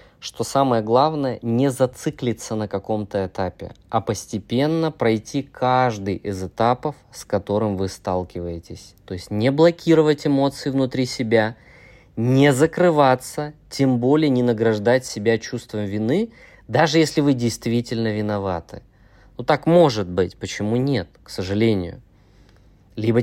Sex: male